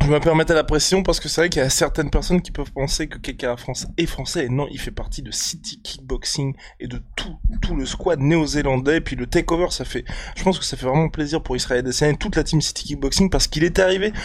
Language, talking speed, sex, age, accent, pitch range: French, 275 wpm, male, 20-39, French, 130-160 Hz